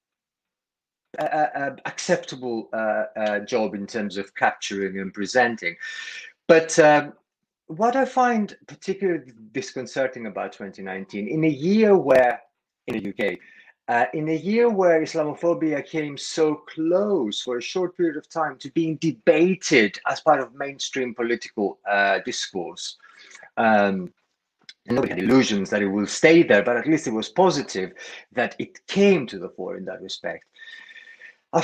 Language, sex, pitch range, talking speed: Turkish, male, 115-180 Hz, 150 wpm